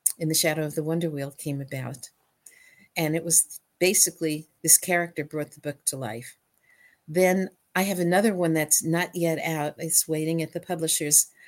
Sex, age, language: female, 60-79, English